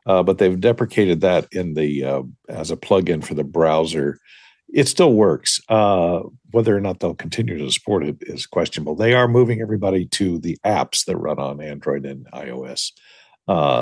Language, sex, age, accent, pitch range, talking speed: English, male, 50-69, American, 80-115 Hz, 180 wpm